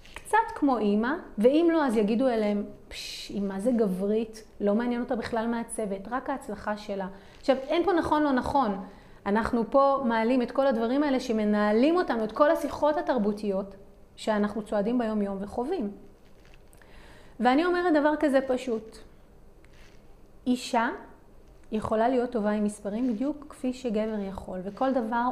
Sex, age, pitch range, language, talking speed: female, 30-49, 205-260 Hz, Hebrew, 140 wpm